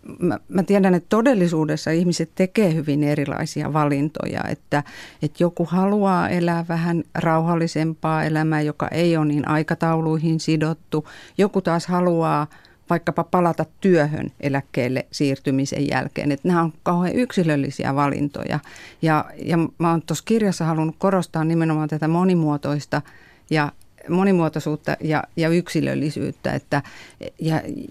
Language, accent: Finnish, native